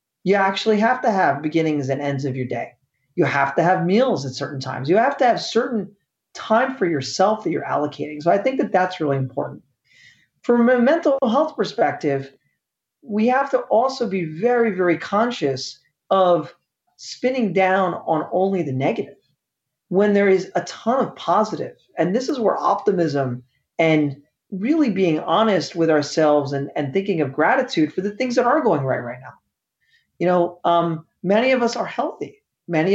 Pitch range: 150-220 Hz